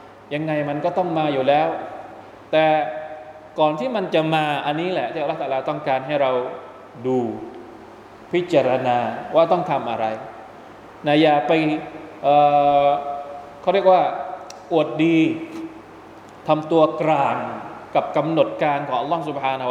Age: 20-39